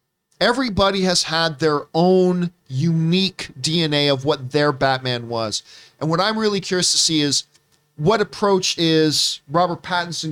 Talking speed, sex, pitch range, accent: 145 wpm, male, 150-185 Hz, American